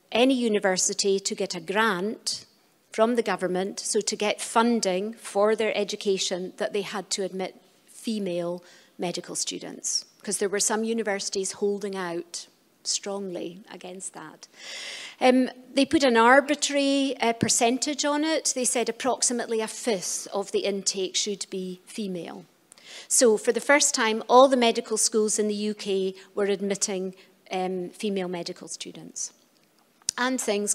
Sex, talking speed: female, 145 wpm